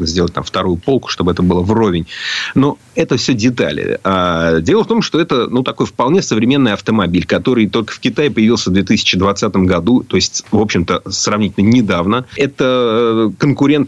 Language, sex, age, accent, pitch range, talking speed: Russian, male, 30-49, native, 95-125 Hz, 170 wpm